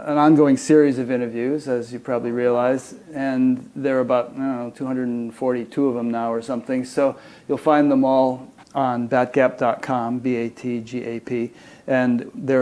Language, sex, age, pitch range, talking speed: English, male, 40-59, 120-135 Hz, 150 wpm